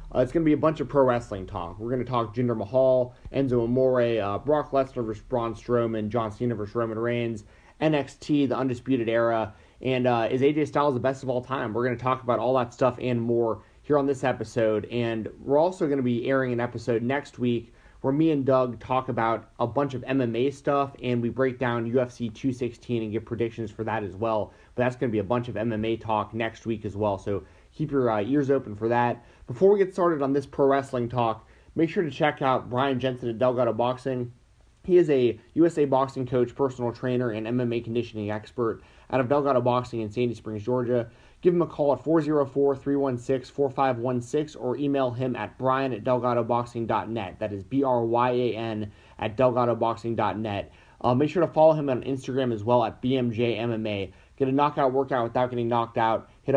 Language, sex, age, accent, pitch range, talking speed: English, male, 30-49, American, 115-135 Hz, 205 wpm